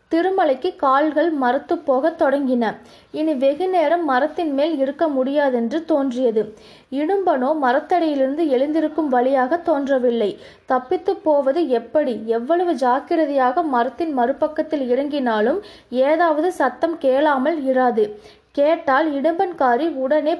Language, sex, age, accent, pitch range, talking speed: Tamil, female, 20-39, native, 255-315 Hz, 95 wpm